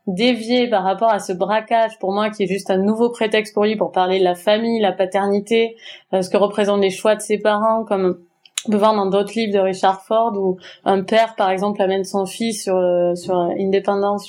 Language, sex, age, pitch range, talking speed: French, female, 20-39, 190-225 Hz, 220 wpm